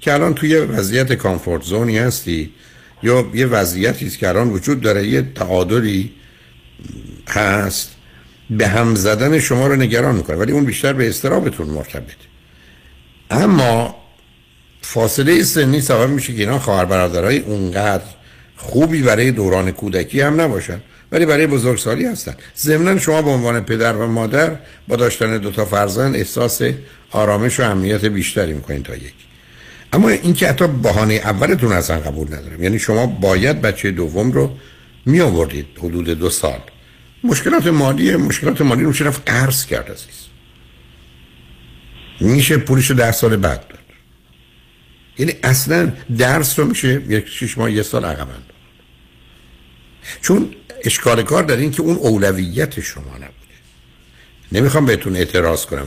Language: Persian